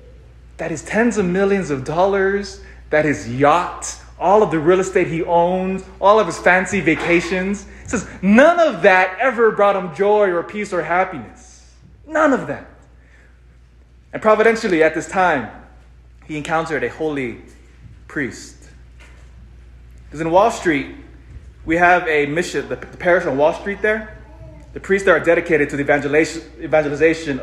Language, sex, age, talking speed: English, male, 20-39, 150 wpm